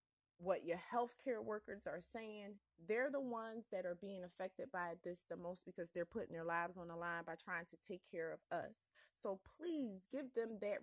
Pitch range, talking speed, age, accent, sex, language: 170-195 Hz, 205 wpm, 30-49, American, female, English